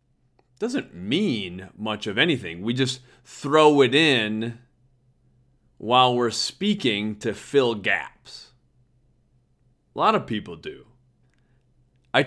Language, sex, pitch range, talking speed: English, male, 120-135 Hz, 110 wpm